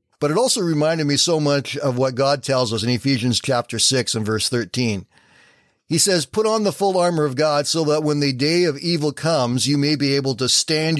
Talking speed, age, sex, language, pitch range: 230 wpm, 40-59, male, English, 125-160 Hz